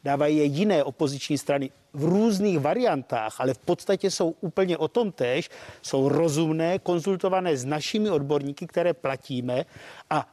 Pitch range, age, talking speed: 155-200 Hz, 50-69, 145 wpm